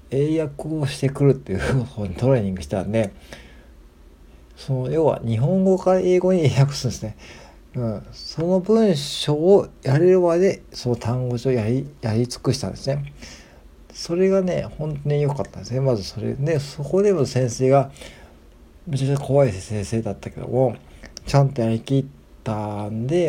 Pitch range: 110-145 Hz